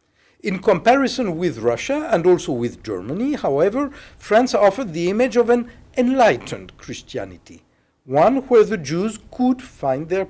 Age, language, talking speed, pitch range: 60-79, English, 140 wpm, 155-240 Hz